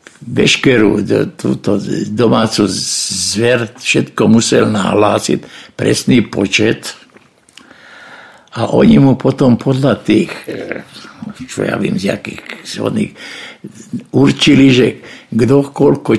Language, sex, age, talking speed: Slovak, male, 60-79, 90 wpm